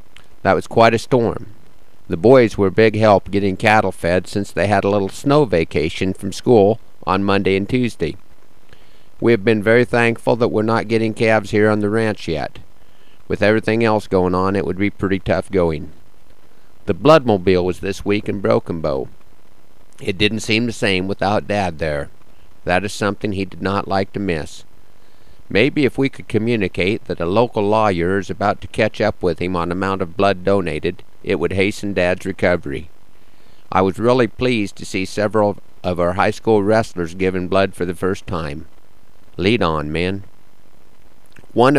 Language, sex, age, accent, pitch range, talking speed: English, male, 50-69, American, 95-110 Hz, 180 wpm